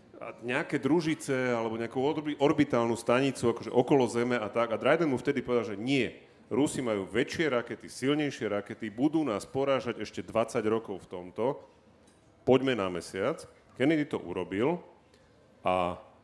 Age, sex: 40-59, male